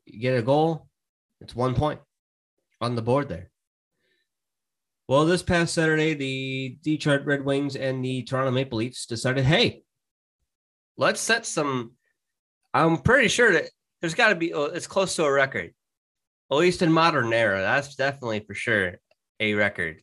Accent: American